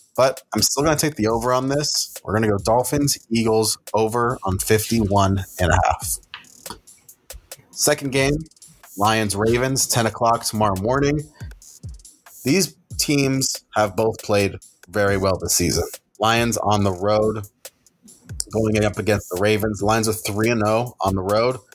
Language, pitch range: English, 100-125 Hz